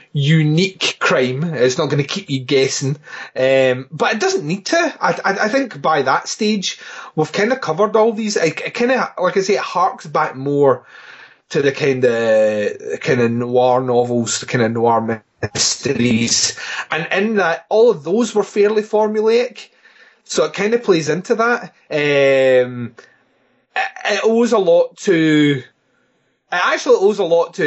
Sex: male